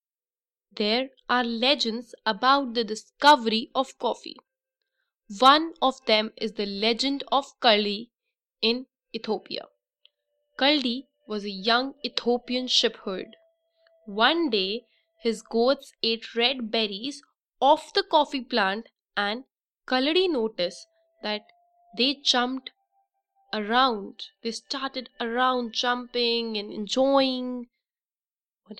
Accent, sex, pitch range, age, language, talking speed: Indian, female, 230-300 Hz, 10-29, English, 105 wpm